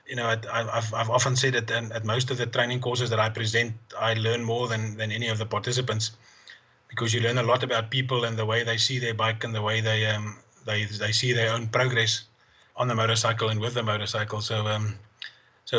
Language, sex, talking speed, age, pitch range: English, male, 230 wpm, 30-49, 110-125 Hz